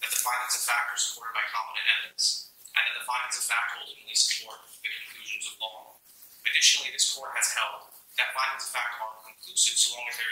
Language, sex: English, male